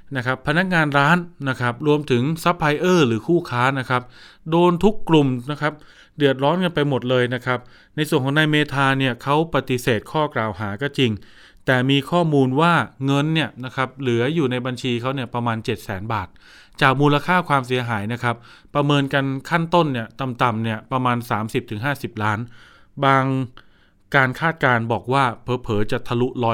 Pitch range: 120-145 Hz